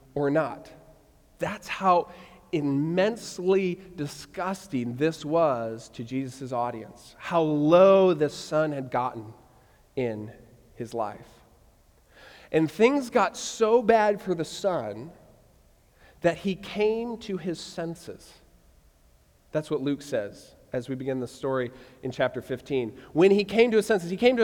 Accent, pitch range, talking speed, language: American, 150-205 Hz, 135 wpm, English